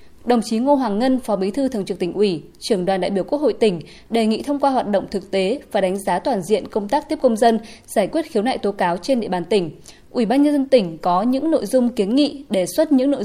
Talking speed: 280 wpm